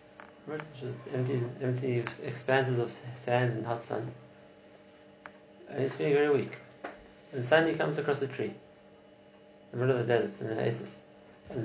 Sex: male